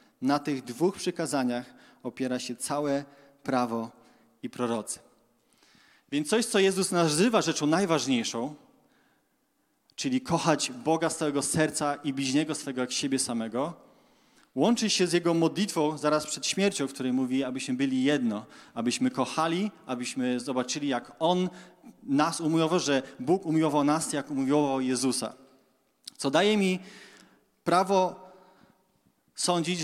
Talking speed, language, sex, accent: 125 wpm, Polish, male, native